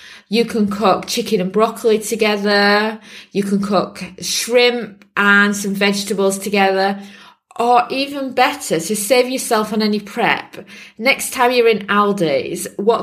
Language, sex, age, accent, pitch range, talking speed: English, female, 20-39, British, 185-215 Hz, 140 wpm